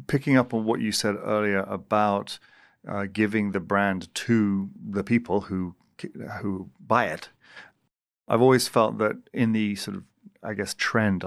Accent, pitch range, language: British, 100-120 Hz, English